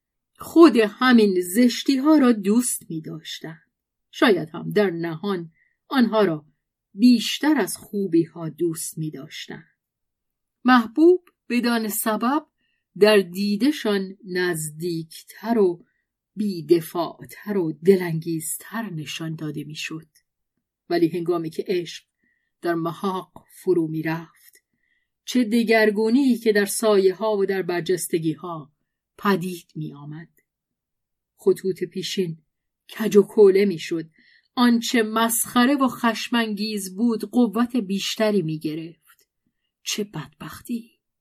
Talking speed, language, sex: 110 wpm, Persian, female